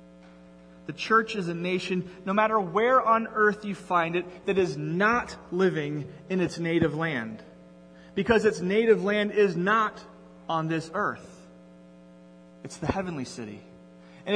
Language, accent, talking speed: English, American, 145 wpm